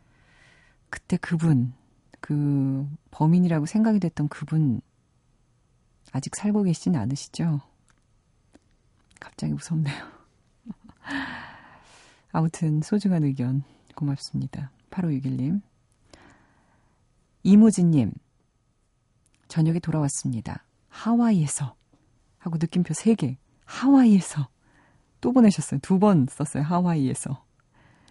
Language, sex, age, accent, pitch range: Korean, female, 40-59, native, 140-190 Hz